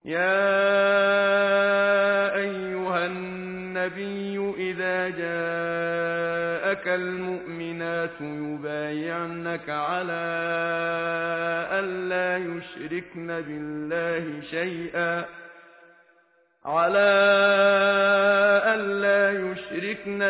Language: Persian